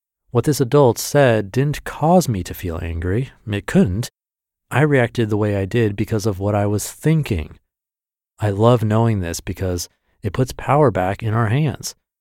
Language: English